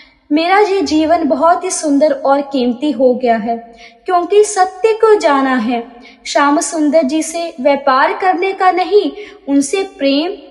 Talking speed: 155 wpm